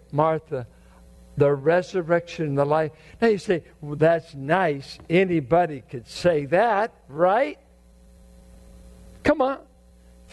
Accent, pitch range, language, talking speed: American, 150-220 Hz, English, 110 wpm